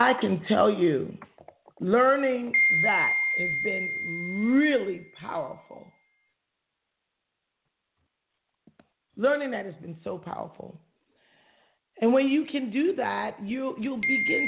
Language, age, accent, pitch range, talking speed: English, 40-59, American, 190-265 Hz, 105 wpm